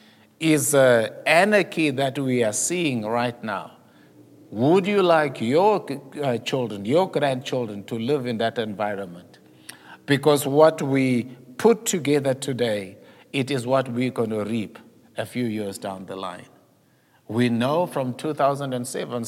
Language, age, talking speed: English, 60-79, 135 wpm